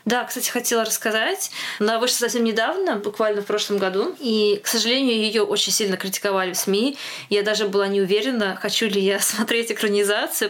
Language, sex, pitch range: Russian, female, 200-235 Hz